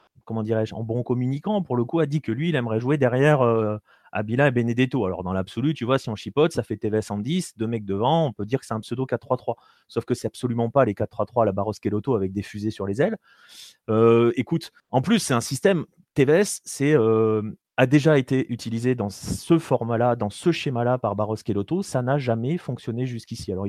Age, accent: 30-49, French